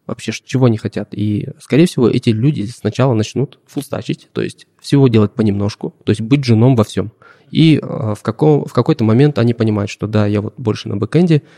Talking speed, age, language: 200 wpm, 20-39, Russian